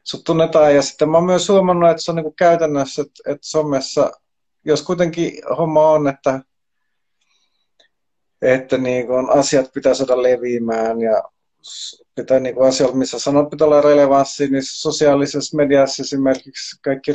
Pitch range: 120-150 Hz